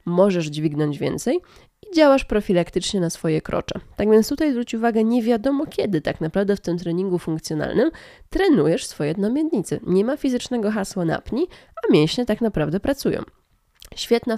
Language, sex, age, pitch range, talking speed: Polish, female, 20-39, 175-250 Hz, 155 wpm